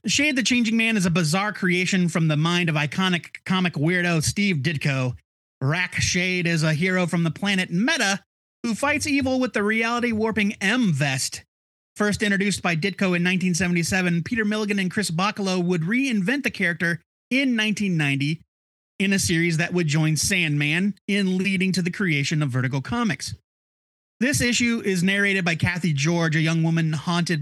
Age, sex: 30-49, male